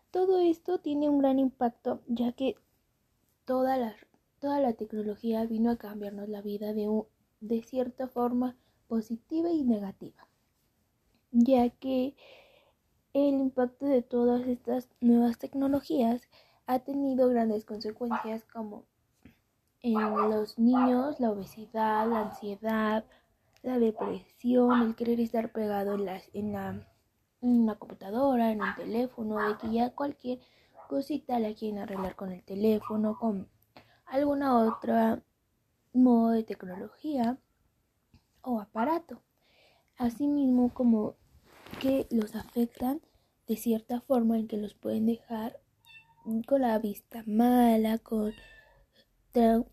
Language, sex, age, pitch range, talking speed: English, female, 20-39, 215-255 Hz, 115 wpm